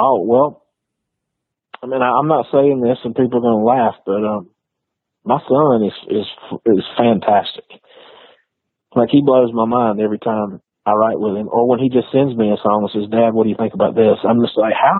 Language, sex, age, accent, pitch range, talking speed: English, male, 30-49, American, 110-130 Hz, 220 wpm